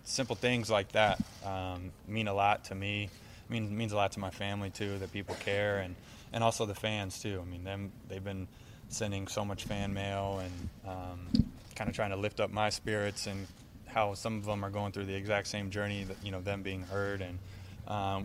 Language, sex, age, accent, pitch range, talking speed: English, male, 20-39, American, 95-105 Hz, 225 wpm